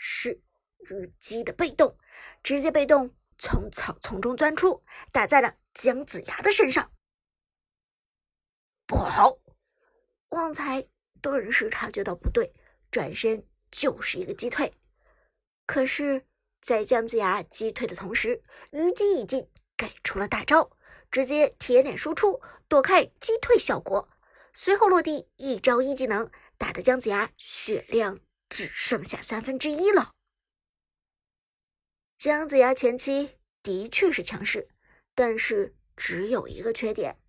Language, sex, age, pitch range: Chinese, male, 50-69, 230-370 Hz